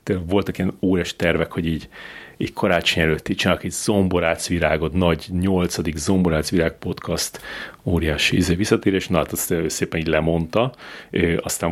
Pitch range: 85-100 Hz